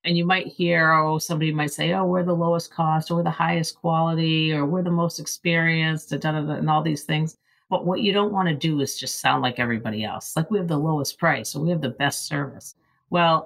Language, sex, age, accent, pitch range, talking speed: English, female, 50-69, American, 130-160 Hz, 235 wpm